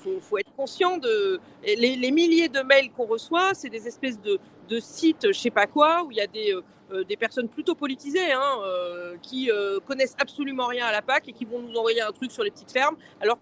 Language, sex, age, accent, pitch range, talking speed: French, female, 40-59, French, 230-300 Hz, 255 wpm